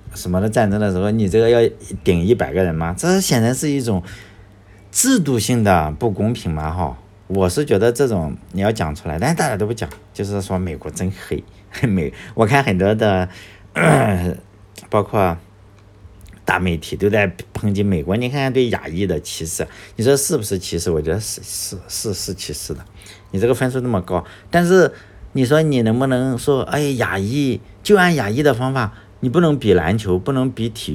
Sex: male